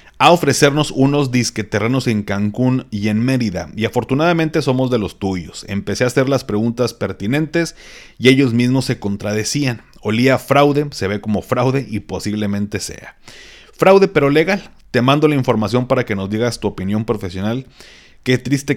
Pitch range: 100-135 Hz